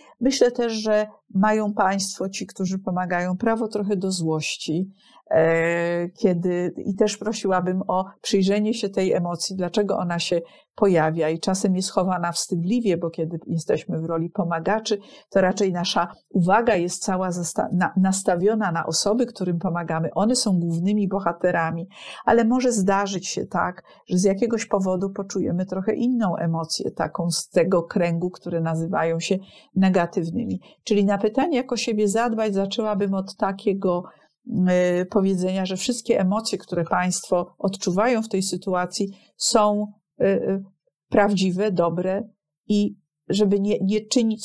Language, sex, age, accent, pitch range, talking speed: Polish, female, 50-69, native, 180-210 Hz, 135 wpm